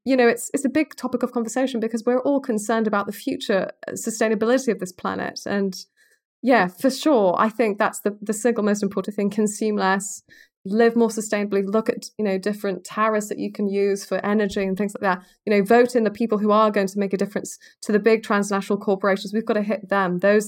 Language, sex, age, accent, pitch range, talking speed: English, female, 20-39, British, 190-220 Hz, 230 wpm